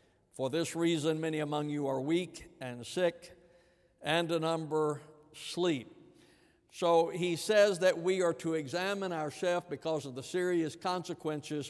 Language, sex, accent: English, male, American